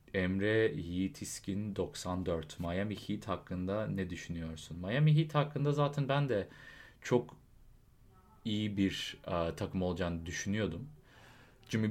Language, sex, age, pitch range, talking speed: English, male, 30-49, 90-115 Hz, 115 wpm